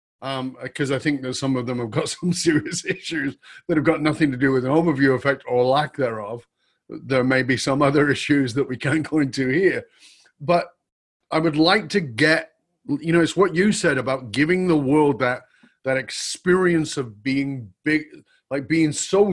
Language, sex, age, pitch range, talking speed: English, male, 40-59, 125-160 Hz, 195 wpm